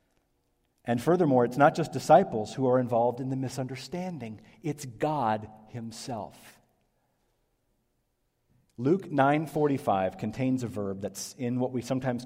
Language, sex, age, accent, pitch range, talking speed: English, male, 40-59, American, 115-140 Hz, 120 wpm